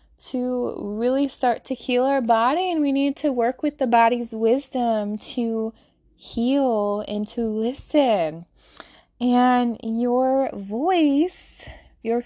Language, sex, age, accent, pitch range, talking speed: English, female, 20-39, American, 220-275 Hz, 120 wpm